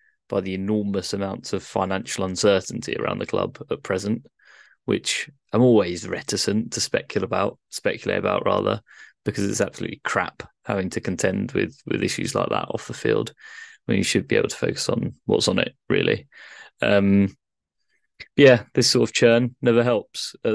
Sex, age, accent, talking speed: male, 20-39, British, 175 wpm